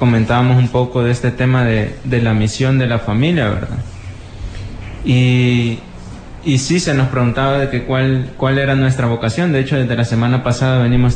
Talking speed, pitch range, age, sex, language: 185 wpm, 125-150 Hz, 20-39, male, Spanish